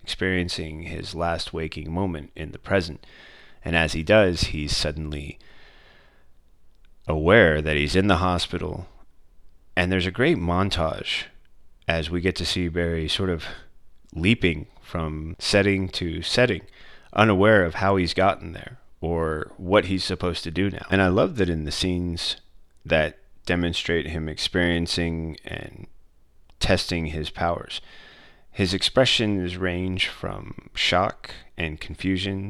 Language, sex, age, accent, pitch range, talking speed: English, male, 30-49, American, 80-95 Hz, 135 wpm